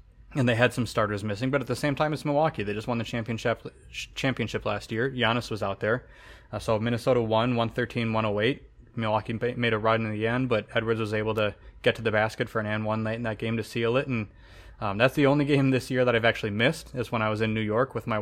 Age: 20-39